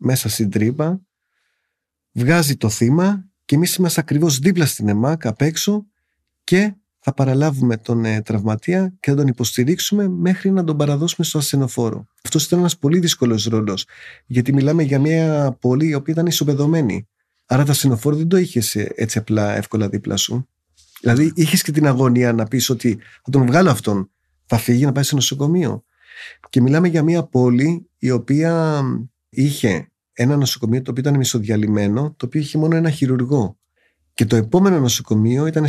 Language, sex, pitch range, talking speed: Greek, male, 115-160 Hz, 165 wpm